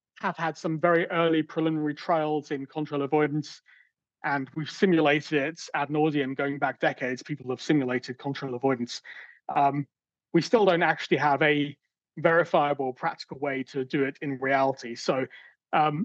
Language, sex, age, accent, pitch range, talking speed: English, male, 30-49, British, 135-165 Hz, 155 wpm